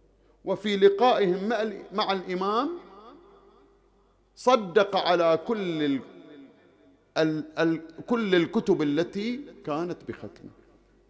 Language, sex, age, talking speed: English, male, 50-69, 85 wpm